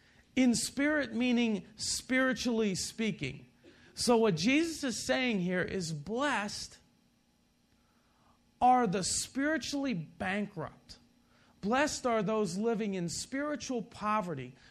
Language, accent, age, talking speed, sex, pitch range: English, American, 40-59, 100 wpm, male, 180-250 Hz